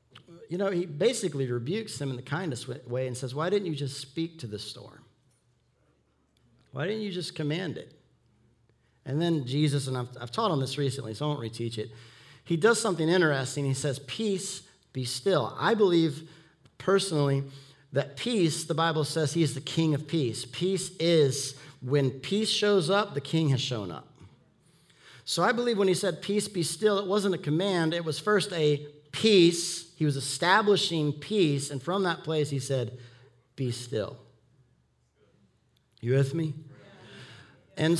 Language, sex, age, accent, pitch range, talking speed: English, male, 40-59, American, 130-180 Hz, 170 wpm